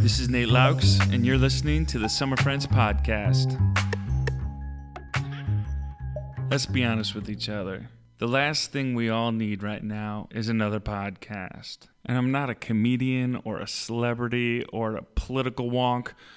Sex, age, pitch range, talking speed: male, 30-49, 110-125 Hz, 150 wpm